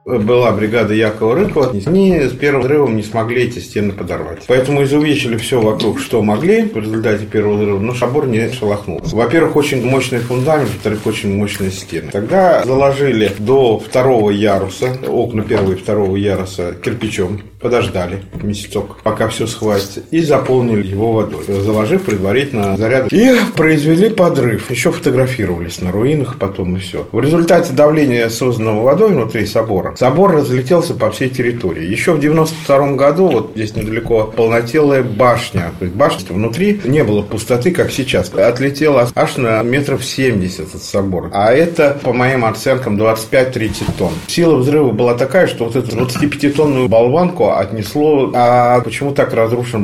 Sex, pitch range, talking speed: male, 105-140 Hz, 150 wpm